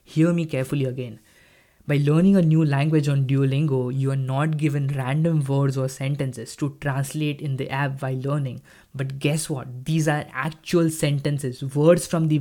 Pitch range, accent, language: 140-165 Hz, Indian, English